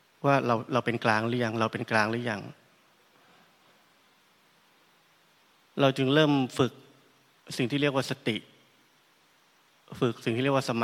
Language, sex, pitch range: Thai, male, 115-135 Hz